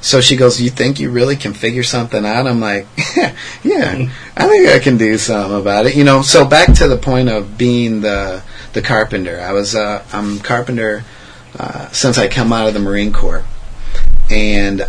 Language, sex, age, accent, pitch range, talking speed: English, male, 30-49, American, 100-120 Hz, 205 wpm